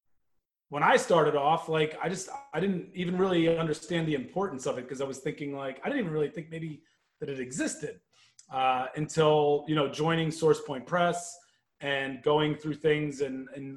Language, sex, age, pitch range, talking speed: English, male, 30-49, 145-175 Hz, 185 wpm